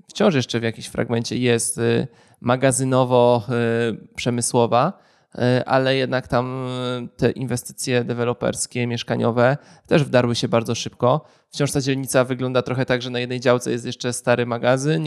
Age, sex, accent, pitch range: 20-39, male, native, 120-135 Hz